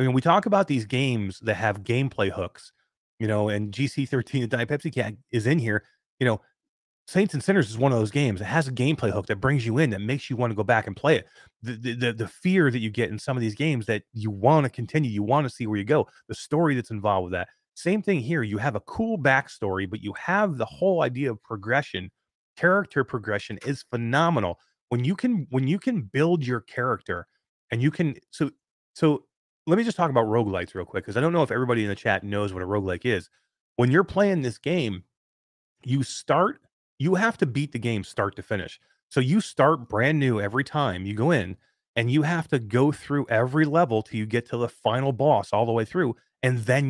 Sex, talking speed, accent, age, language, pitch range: male, 235 wpm, American, 30-49, English, 110-150 Hz